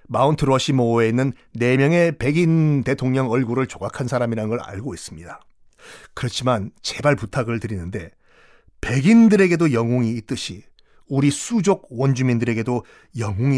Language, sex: Korean, male